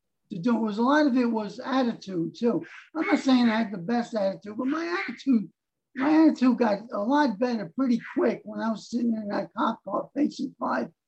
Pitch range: 200-255 Hz